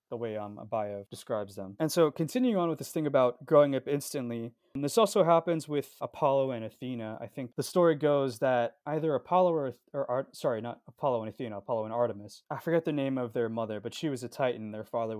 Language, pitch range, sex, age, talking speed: English, 115-145 Hz, male, 20-39, 235 wpm